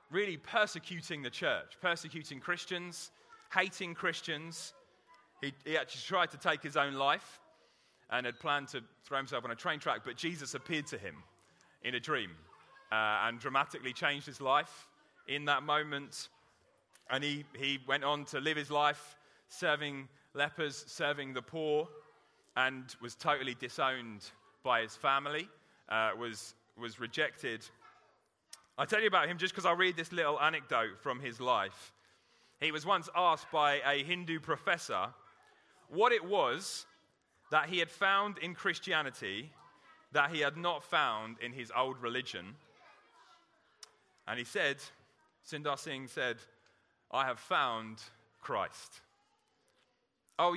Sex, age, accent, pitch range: male, 30-49, British, 130-170 Hz